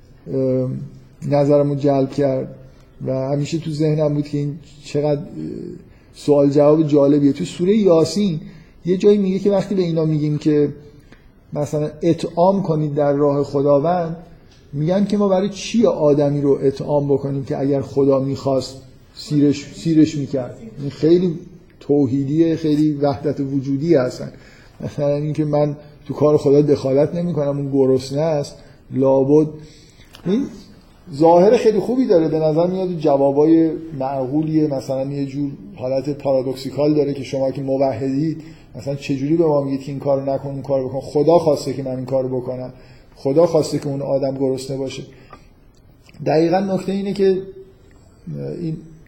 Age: 50-69